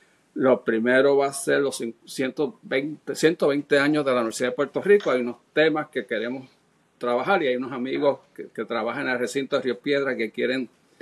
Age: 50-69